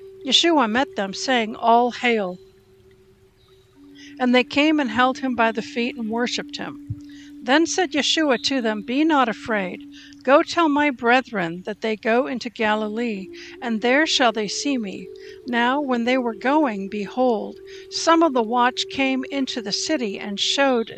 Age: 60-79